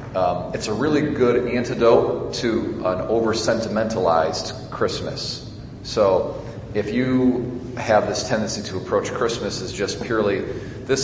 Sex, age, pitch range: male, 40-59, 100-125 Hz